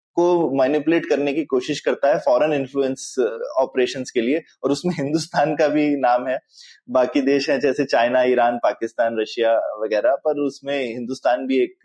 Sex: male